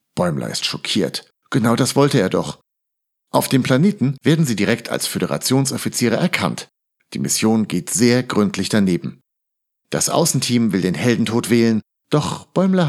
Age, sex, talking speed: 50-69, male, 145 wpm